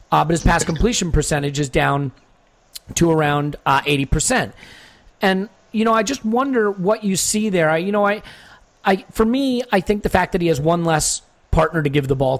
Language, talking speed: English, 210 wpm